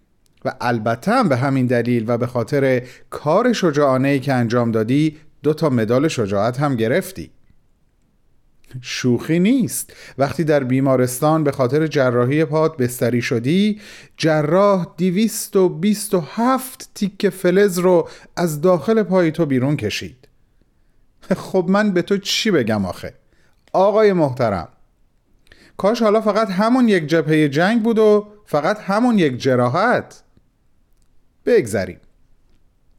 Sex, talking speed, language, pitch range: male, 120 wpm, Persian, 125-200 Hz